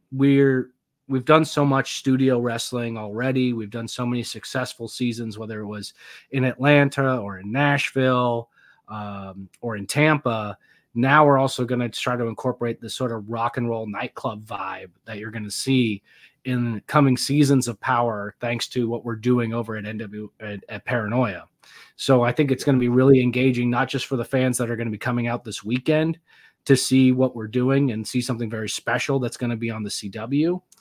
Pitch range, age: 115-135 Hz, 30-49